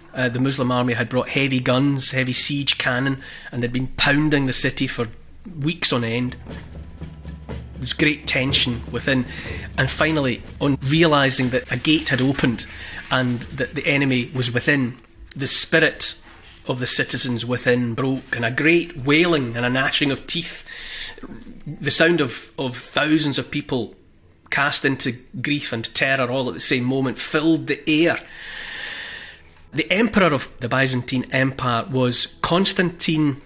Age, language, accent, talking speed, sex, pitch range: 30-49, English, British, 150 wpm, male, 125-150 Hz